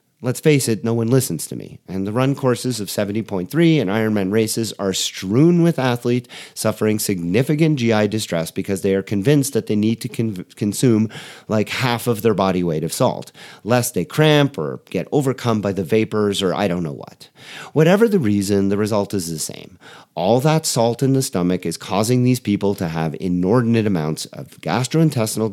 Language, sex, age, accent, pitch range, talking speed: English, male, 40-59, American, 100-155 Hz, 190 wpm